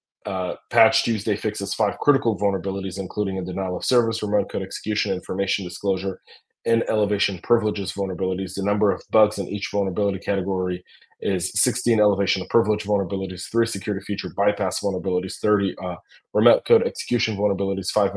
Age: 30-49